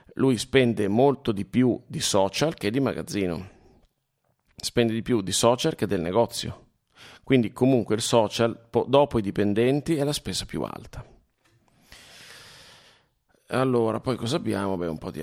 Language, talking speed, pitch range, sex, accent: Italian, 150 wpm, 95-120 Hz, male, native